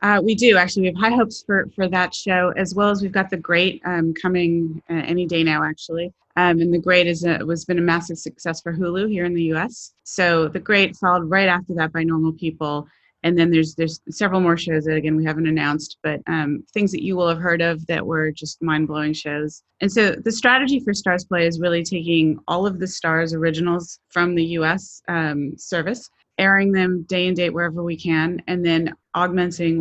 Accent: American